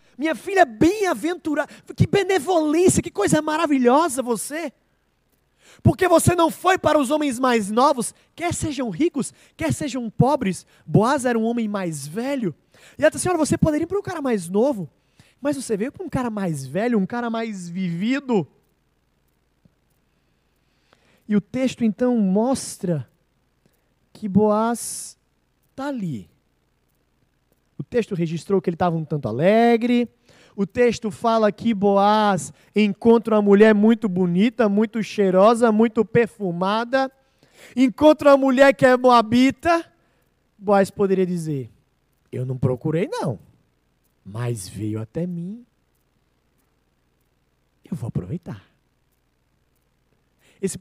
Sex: male